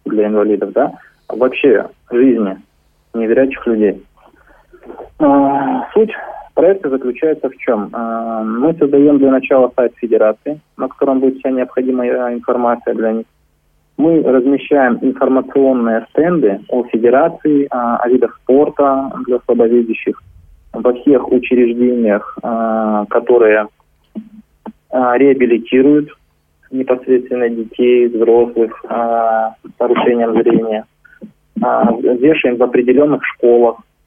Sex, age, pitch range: male, 20-39, 110-135 Hz